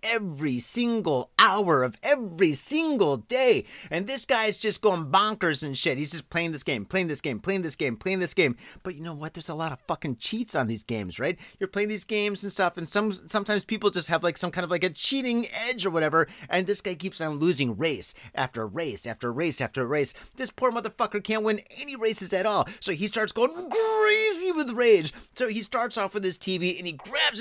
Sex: male